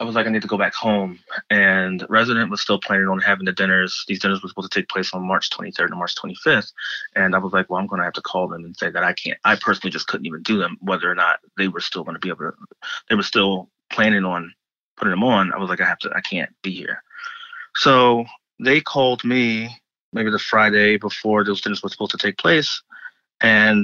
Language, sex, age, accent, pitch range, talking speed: English, male, 20-39, American, 95-115 Hz, 245 wpm